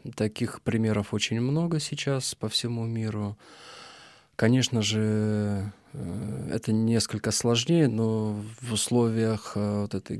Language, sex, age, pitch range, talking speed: Ukrainian, male, 20-39, 105-125 Hz, 105 wpm